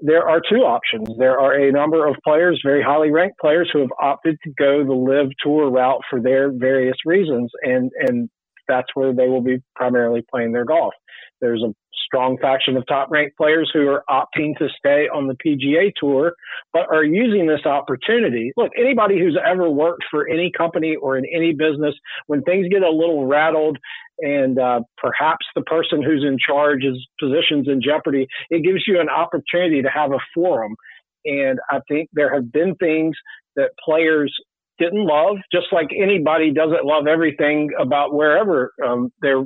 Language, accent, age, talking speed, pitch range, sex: English, American, 40-59, 180 wpm, 135-165 Hz, male